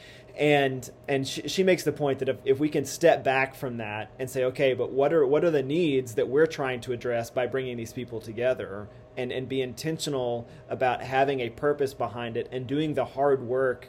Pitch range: 120-140 Hz